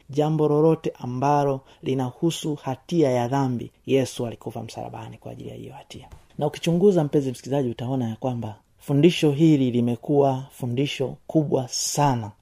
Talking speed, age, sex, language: 130 wpm, 30-49, male, Swahili